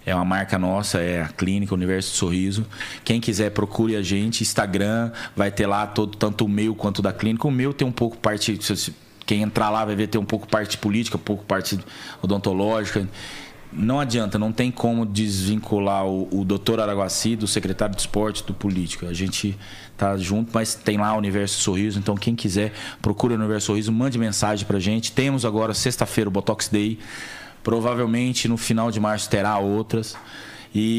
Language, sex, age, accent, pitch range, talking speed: Portuguese, male, 20-39, Brazilian, 100-115 Hz, 190 wpm